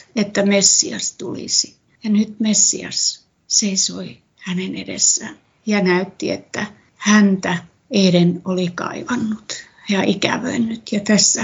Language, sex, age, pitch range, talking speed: Finnish, female, 60-79, 185-225 Hz, 105 wpm